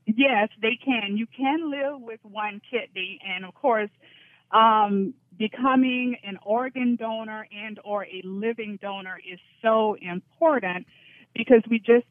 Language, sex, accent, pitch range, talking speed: English, female, American, 185-225 Hz, 140 wpm